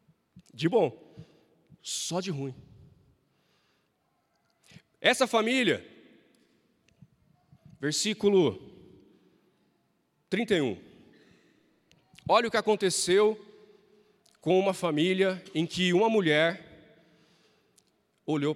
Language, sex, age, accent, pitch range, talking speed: Portuguese, male, 40-59, Brazilian, 160-210 Hz, 70 wpm